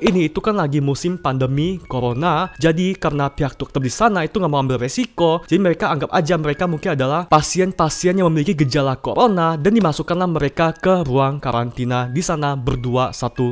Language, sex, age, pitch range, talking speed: Indonesian, male, 20-39, 145-190 Hz, 175 wpm